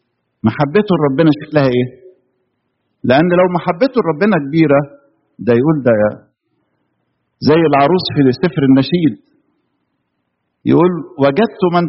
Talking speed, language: 100 wpm, English